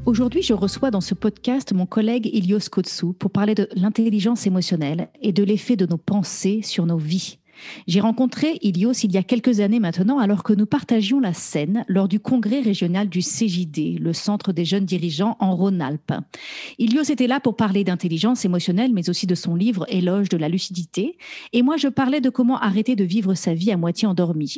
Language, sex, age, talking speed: French, female, 40-59, 205 wpm